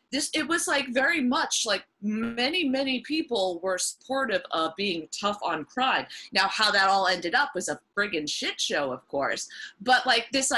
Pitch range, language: 170-255 Hz, English